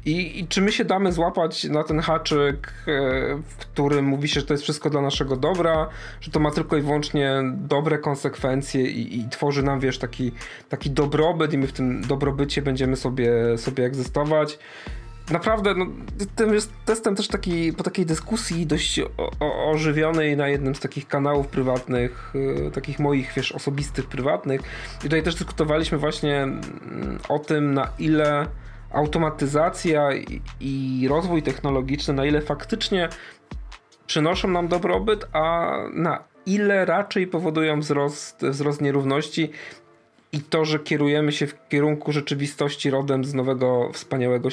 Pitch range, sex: 135-160 Hz, male